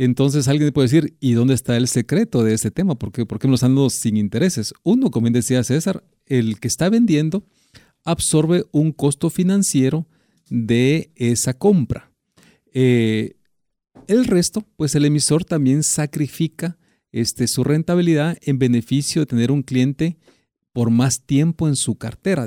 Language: Spanish